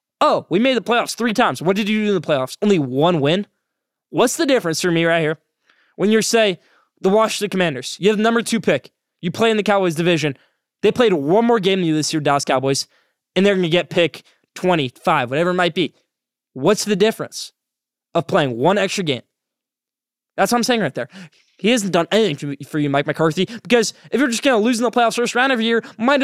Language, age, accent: English, 20-39, American